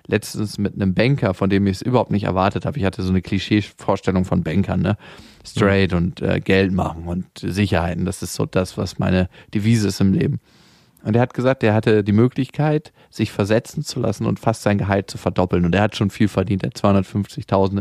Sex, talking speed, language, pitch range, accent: male, 210 wpm, German, 95-115 Hz, German